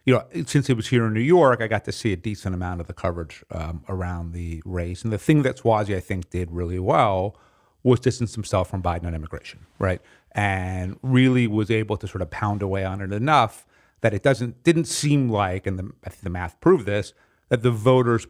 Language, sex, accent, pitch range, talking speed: English, male, American, 90-120 Hz, 225 wpm